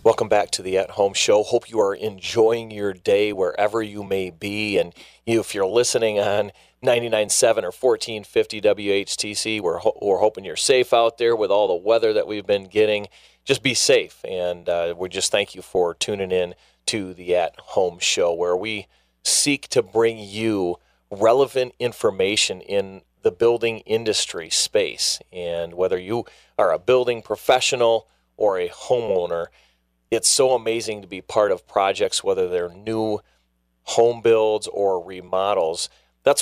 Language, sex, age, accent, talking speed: English, male, 30-49, American, 160 wpm